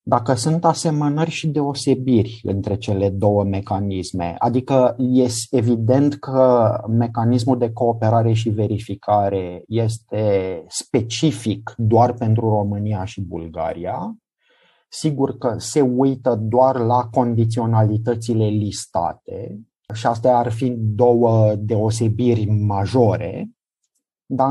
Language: Romanian